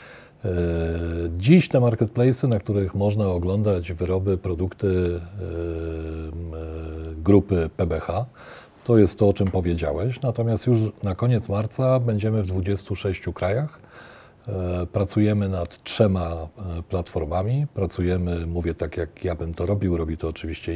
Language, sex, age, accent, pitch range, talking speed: Polish, male, 40-59, native, 85-110 Hz, 120 wpm